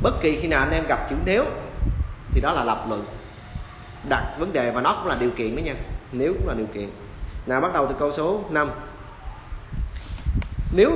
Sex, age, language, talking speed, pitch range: male, 20-39, Vietnamese, 210 wpm, 95-145 Hz